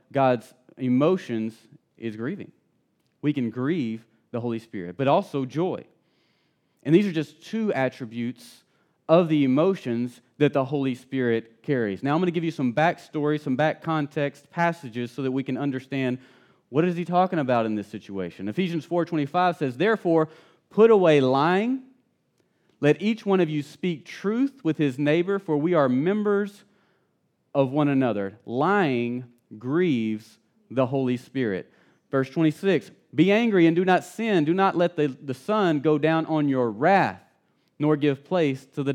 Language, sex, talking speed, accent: English, male, 165 wpm, American